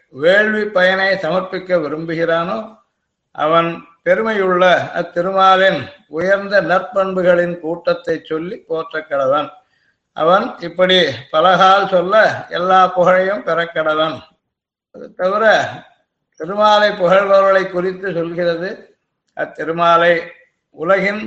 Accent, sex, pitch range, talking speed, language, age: native, male, 165-195 Hz, 80 wpm, Tamil, 60-79